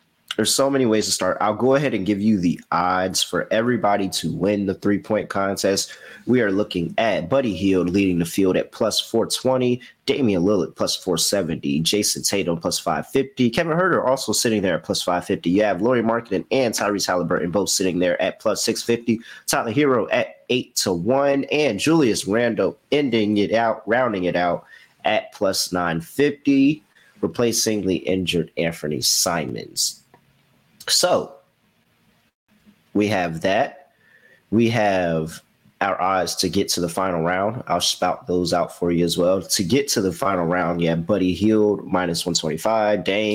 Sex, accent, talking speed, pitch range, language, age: male, American, 165 wpm, 90-115 Hz, English, 30-49